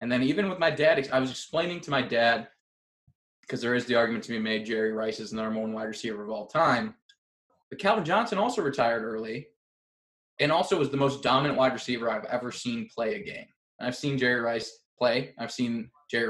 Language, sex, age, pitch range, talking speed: English, male, 20-39, 115-155 Hz, 215 wpm